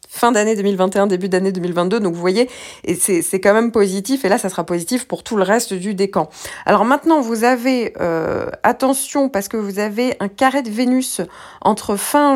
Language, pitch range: French, 185-235 Hz